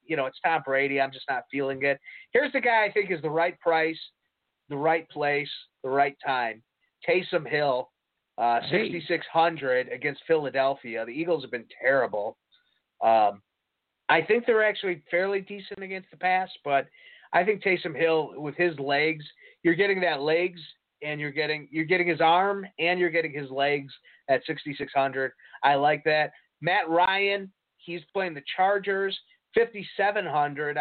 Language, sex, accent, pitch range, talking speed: English, male, American, 140-180 Hz, 160 wpm